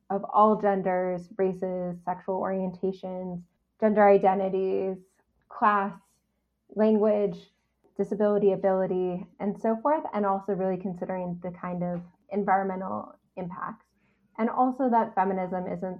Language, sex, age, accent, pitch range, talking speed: English, female, 10-29, American, 185-215 Hz, 110 wpm